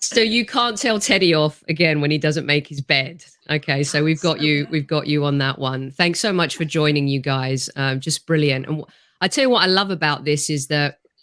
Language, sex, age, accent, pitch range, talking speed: English, female, 40-59, British, 145-165 Hz, 240 wpm